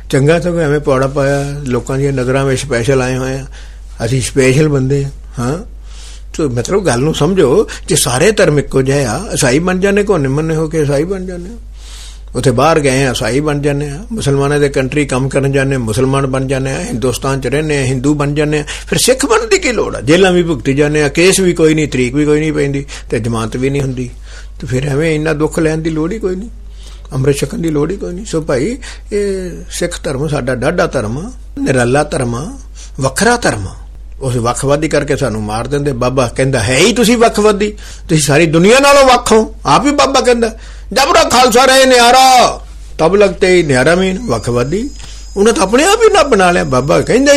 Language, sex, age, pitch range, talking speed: Punjabi, male, 60-79, 130-190 Hz, 200 wpm